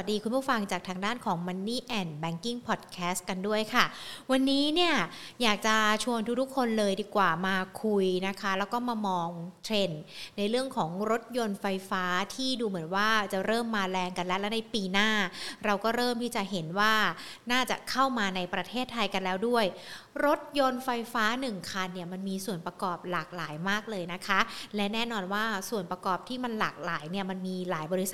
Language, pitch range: Thai, 185-230 Hz